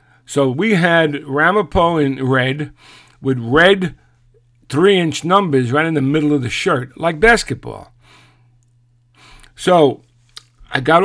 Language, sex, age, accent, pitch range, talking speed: English, male, 50-69, American, 125-150 Hz, 120 wpm